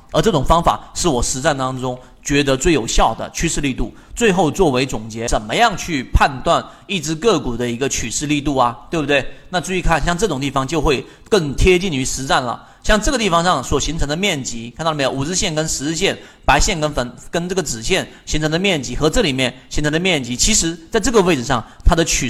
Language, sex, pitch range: Chinese, male, 125-175 Hz